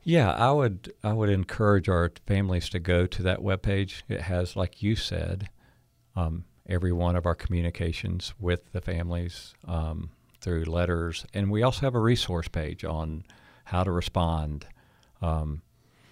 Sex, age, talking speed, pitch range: male, 50-69, 155 wpm, 85-105 Hz